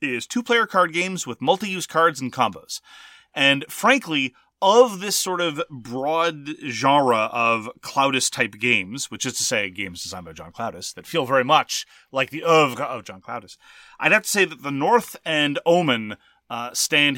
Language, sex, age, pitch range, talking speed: English, male, 30-49, 130-180 Hz, 175 wpm